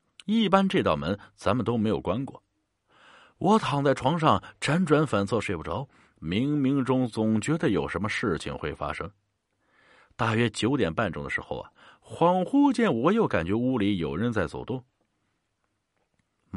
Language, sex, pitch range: Chinese, male, 100-165 Hz